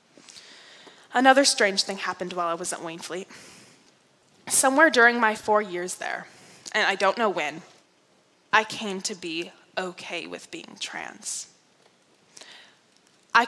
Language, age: English, 10-29